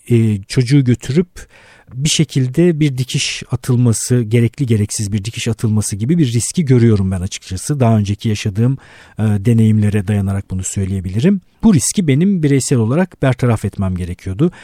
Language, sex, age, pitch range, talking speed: Turkish, male, 50-69, 110-145 Hz, 135 wpm